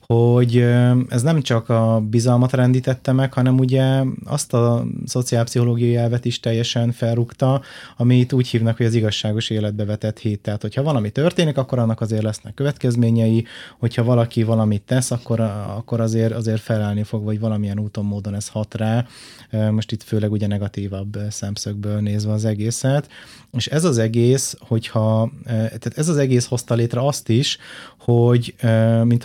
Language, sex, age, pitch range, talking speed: Hungarian, male, 30-49, 110-125 Hz, 155 wpm